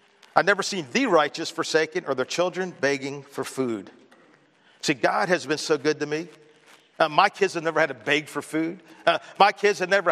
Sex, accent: male, American